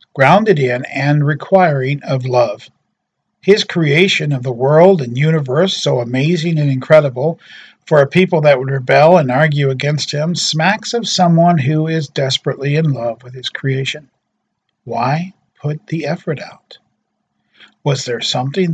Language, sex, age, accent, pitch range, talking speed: English, male, 50-69, American, 130-165 Hz, 145 wpm